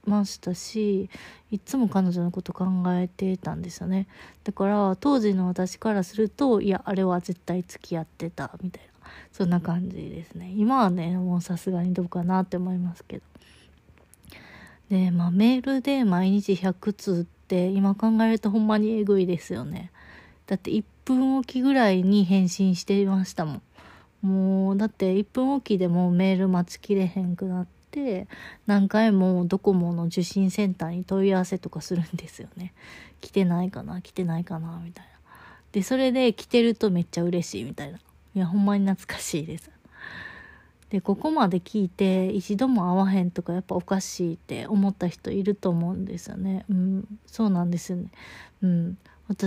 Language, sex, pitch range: Japanese, female, 180-205 Hz